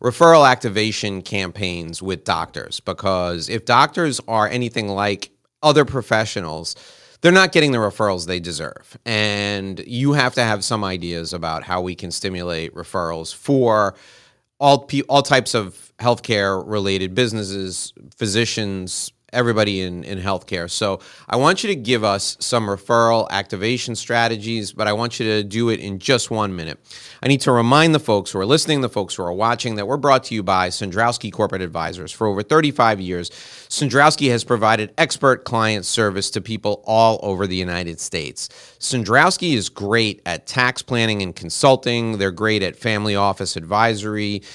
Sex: male